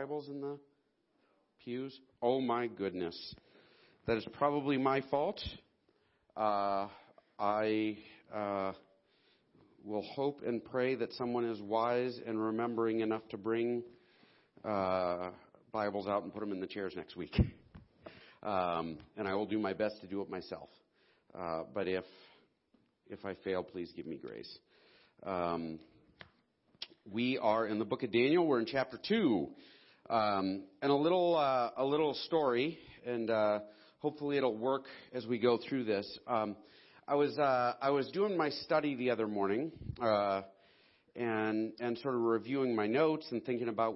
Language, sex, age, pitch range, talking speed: English, male, 40-59, 105-135 Hz, 155 wpm